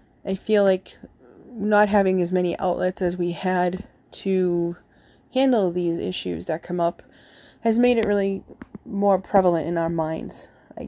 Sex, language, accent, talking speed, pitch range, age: female, English, American, 155 wpm, 175-195 Hz, 20-39